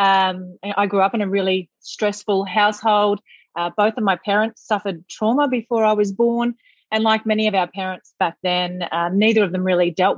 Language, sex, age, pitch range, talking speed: English, female, 30-49, 190-220 Hz, 200 wpm